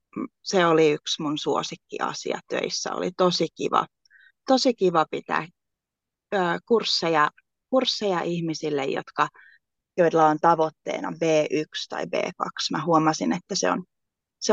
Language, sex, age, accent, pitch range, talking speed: Finnish, female, 30-49, native, 150-190 Hz, 100 wpm